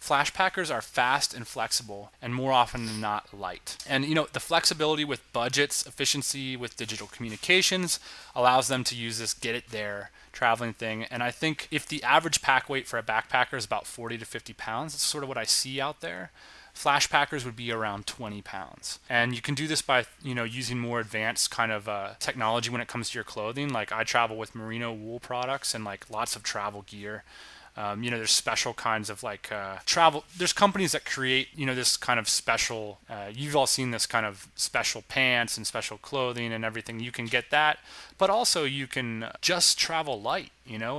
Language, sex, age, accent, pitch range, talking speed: English, male, 20-39, American, 110-135 Hz, 215 wpm